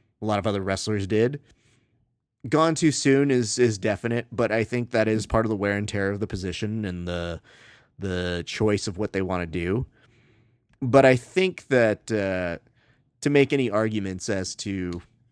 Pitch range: 100-125 Hz